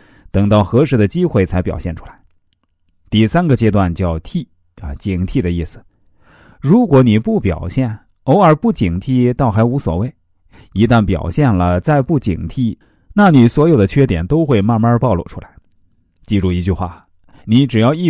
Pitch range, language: 90-125 Hz, Chinese